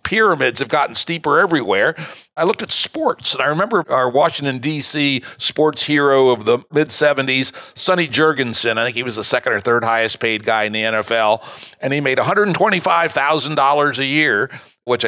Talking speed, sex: 170 wpm, male